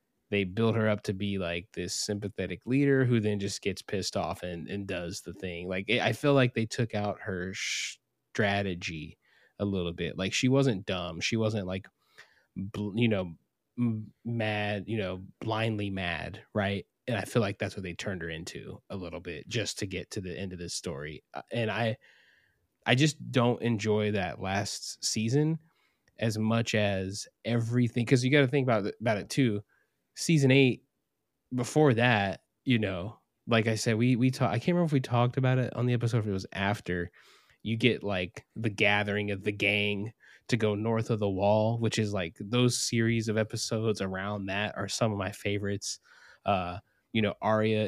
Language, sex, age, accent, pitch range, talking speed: English, male, 20-39, American, 100-115 Hz, 195 wpm